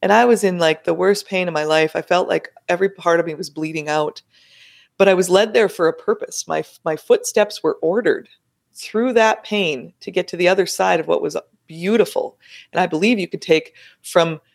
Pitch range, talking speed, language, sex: 165-210 Hz, 225 wpm, English, female